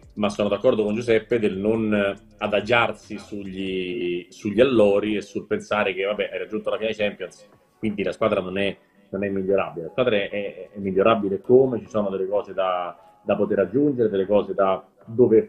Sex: male